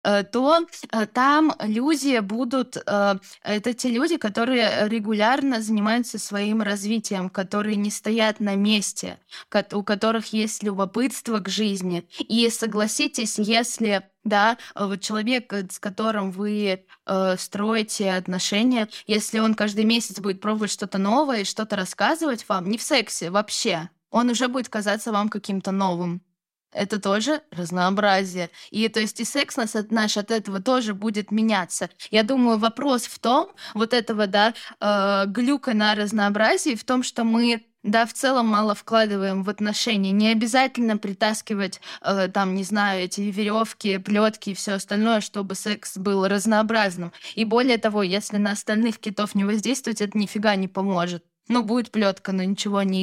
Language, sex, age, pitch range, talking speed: Russian, female, 10-29, 200-230 Hz, 145 wpm